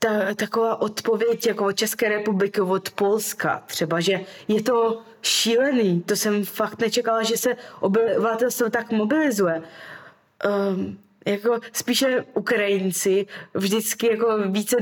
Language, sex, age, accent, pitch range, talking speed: Czech, female, 20-39, native, 195-245 Hz, 120 wpm